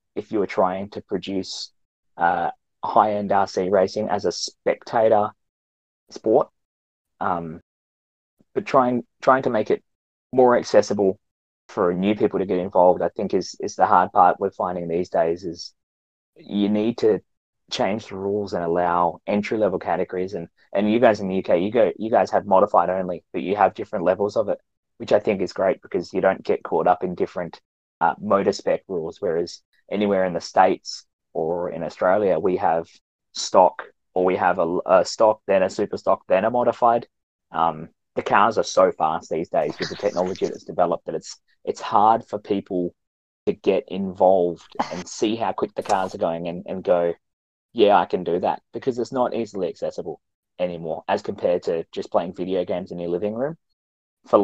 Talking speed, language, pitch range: 190 wpm, English, 85-105 Hz